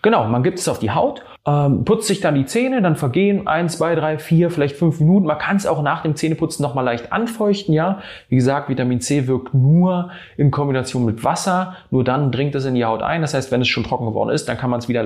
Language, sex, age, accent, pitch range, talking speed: German, male, 30-49, German, 105-140 Hz, 255 wpm